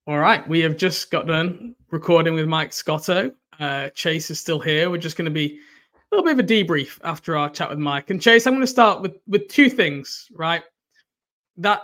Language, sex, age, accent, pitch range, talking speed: English, male, 20-39, British, 155-190 Hz, 225 wpm